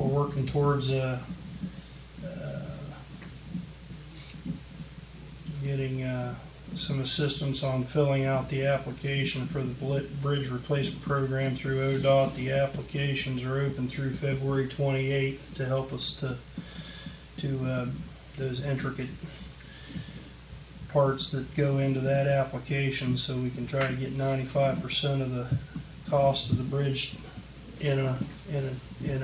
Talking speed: 120 wpm